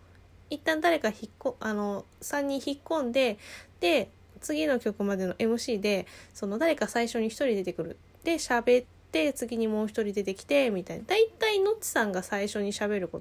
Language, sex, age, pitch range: Japanese, female, 20-39, 180-250 Hz